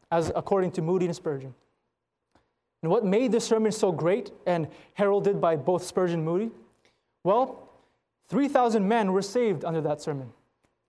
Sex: male